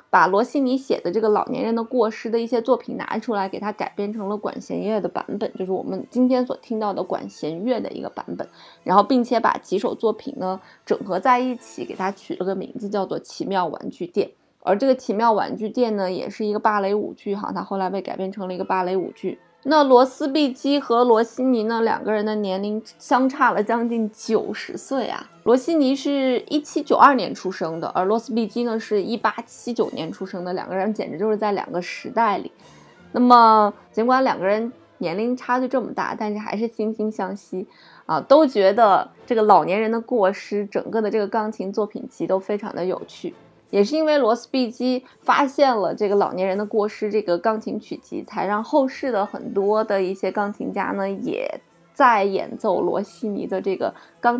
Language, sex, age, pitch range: Chinese, female, 20-39, 200-250 Hz